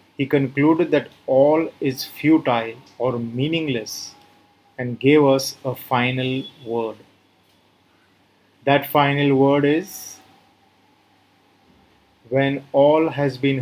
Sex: male